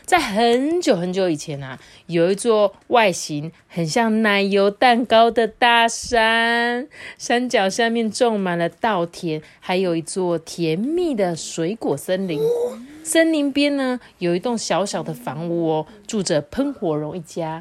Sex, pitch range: female, 170-245 Hz